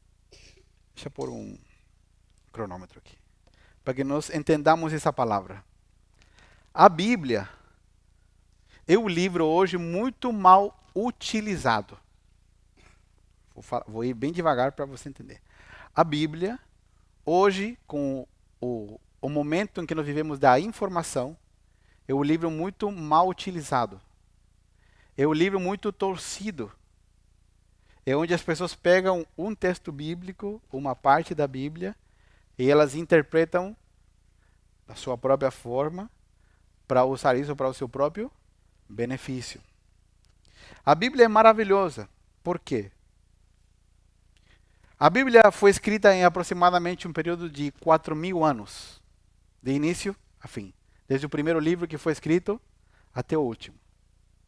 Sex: male